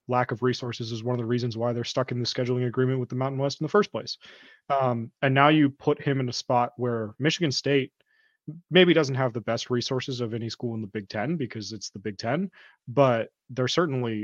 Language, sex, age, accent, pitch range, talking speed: English, male, 20-39, American, 115-140 Hz, 235 wpm